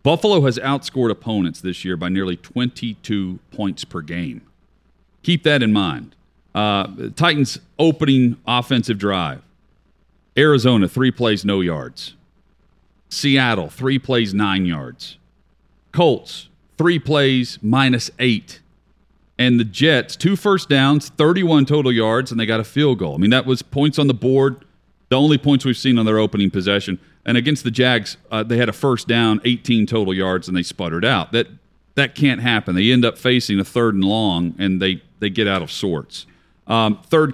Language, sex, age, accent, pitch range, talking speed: English, male, 40-59, American, 100-140 Hz, 170 wpm